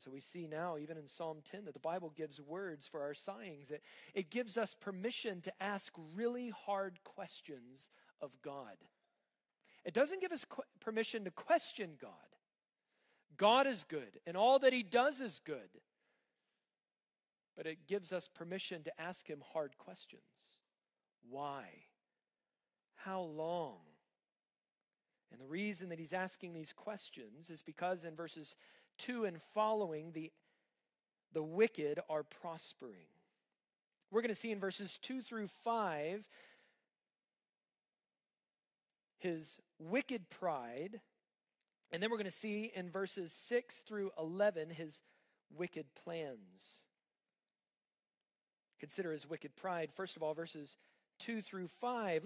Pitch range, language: 160-225 Hz, English